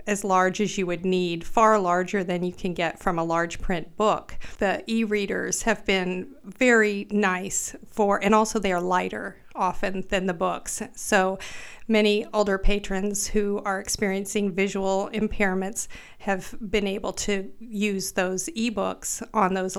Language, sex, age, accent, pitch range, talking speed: English, female, 40-59, American, 190-210 Hz, 155 wpm